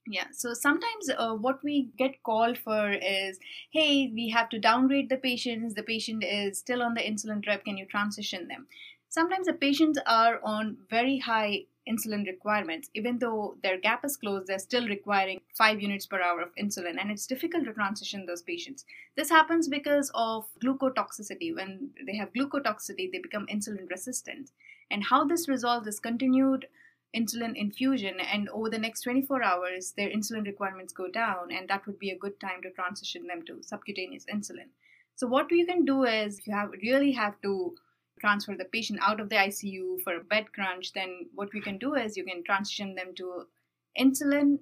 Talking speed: 185 wpm